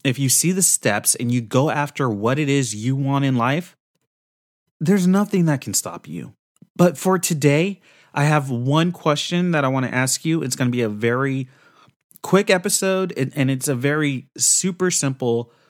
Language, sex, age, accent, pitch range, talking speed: English, male, 30-49, American, 125-155 Hz, 185 wpm